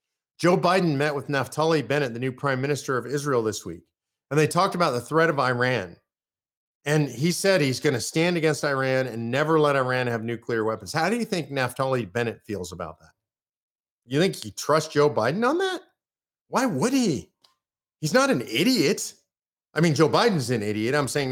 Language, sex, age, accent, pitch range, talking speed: English, male, 40-59, American, 120-165 Hz, 195 wpm